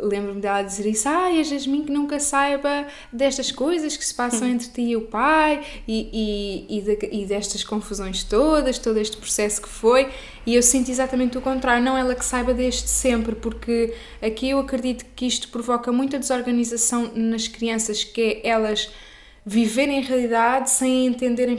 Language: Portuguese